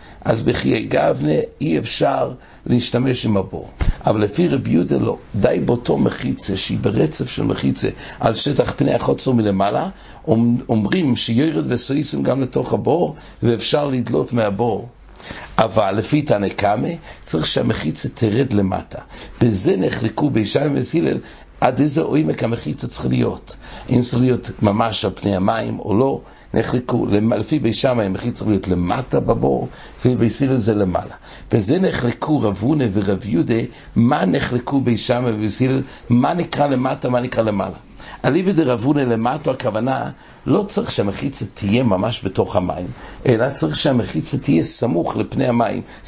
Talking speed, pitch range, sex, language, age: 135 wpm, 100-125 Hz, male, English, 60-79